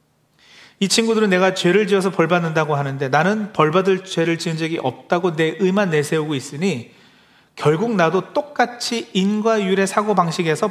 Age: 40-59